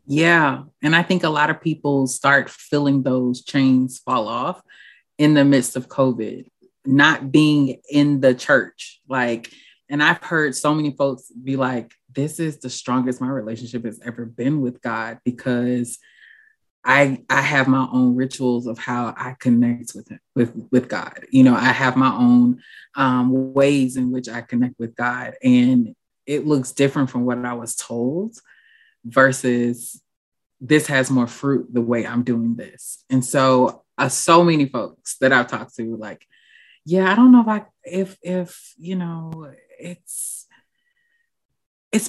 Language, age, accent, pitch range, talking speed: English, 20-39, American, 125-165 Hz, 165 wpm